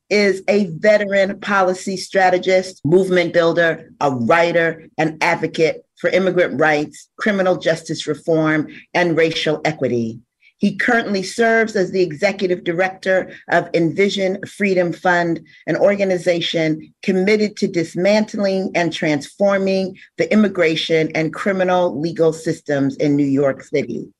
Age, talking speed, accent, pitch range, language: 40-59, 120 wpm, American, 160-200 Hz, English